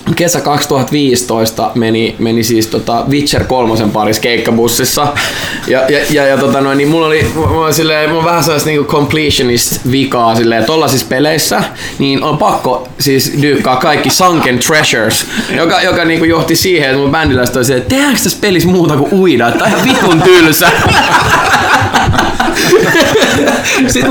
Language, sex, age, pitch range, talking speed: Finnish, male, 20-39, 120-165 Hz, 145 wpm